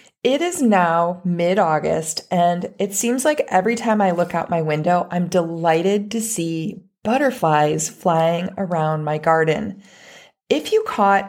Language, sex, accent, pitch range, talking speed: English, female, American, 165-215 Hz, 145 wpm